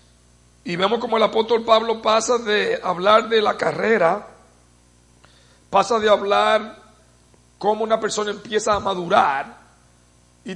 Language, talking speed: English, 125 wpm